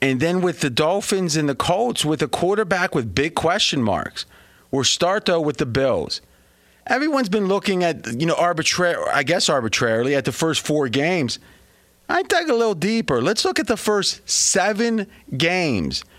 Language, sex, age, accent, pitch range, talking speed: English, male, 30-49, American, 120-180 Hz, 180 wpm